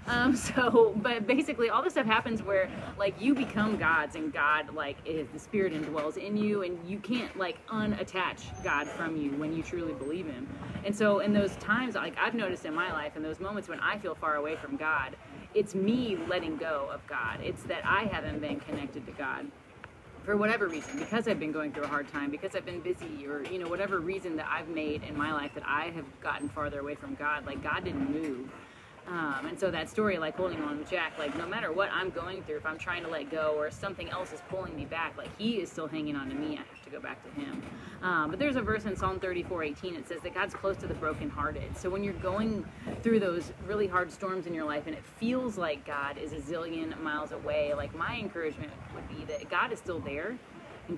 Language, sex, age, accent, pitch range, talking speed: English, female, 30-49, American, 155-210 Hz, 240 wpm